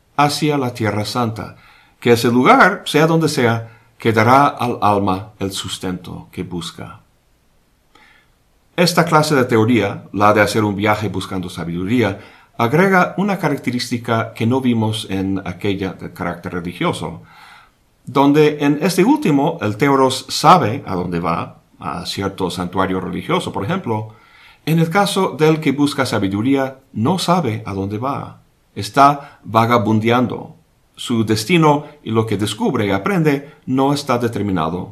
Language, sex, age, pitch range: Spanish, male, 50-69, 95-140 Hz